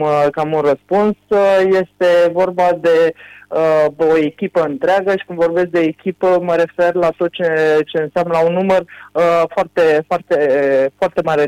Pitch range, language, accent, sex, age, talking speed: 155-180 Hz, Romanian, native, male, 20-39, 150 wpm